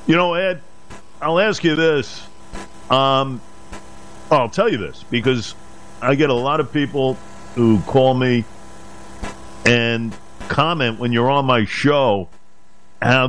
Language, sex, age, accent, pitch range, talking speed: English, male, 50-69, American, 125-165 Hz, 135 wpm